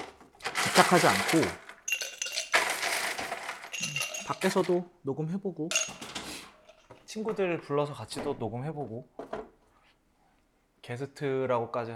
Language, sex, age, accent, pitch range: Korean, male, 30-49, native, 100-140 Hz